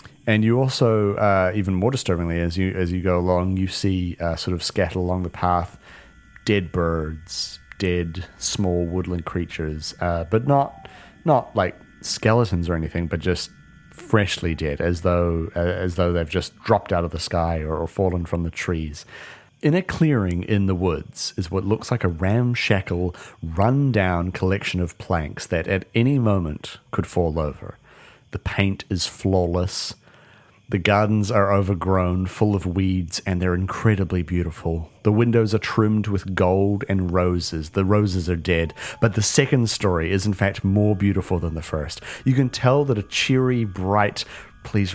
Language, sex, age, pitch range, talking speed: English, male, 30-49, 90-105 Hz, 170 wpm